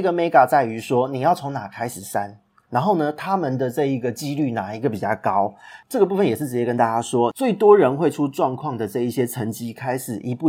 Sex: male